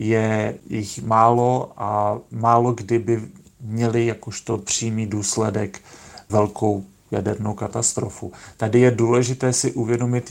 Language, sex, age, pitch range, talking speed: Czech, male, 40-59, 105-115 Hz, 105 wpm